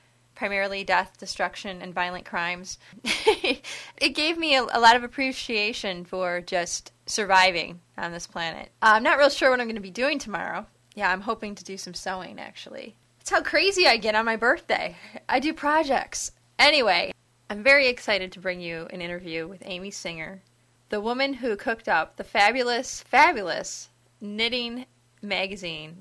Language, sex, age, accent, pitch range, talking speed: English, female, 20-39, American, 180-245 Hz, 170 wpm